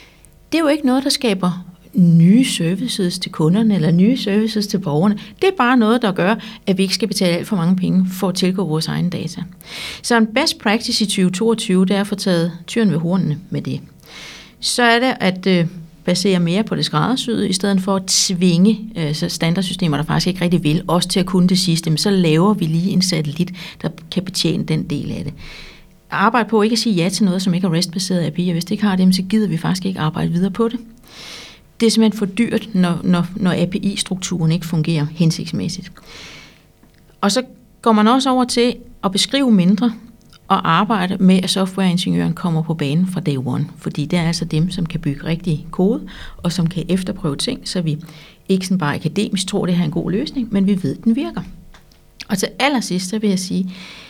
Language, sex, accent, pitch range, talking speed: Danish, female, native, 175-210 Hz, 215 wpm